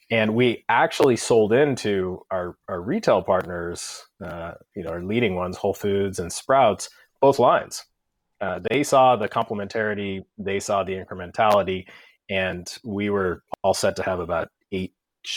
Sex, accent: male, American